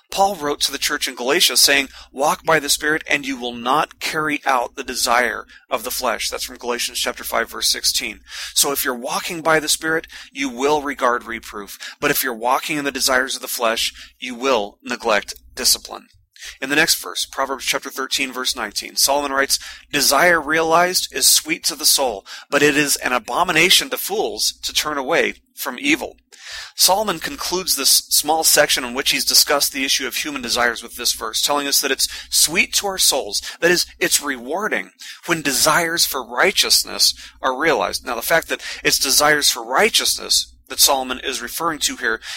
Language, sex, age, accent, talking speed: English, male, 30-49, American, 190 wpm